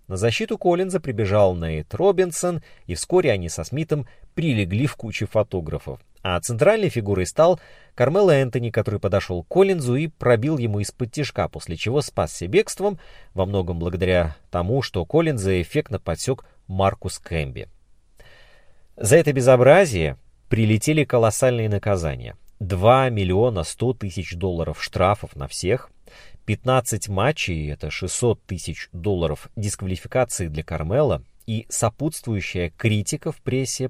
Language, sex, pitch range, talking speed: Russian, male, 95-140 Hz, 125 wpm